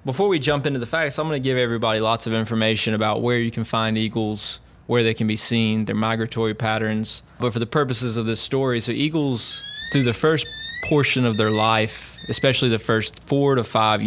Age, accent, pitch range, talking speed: 20-39, American, 110-125 Hz, 215 wpm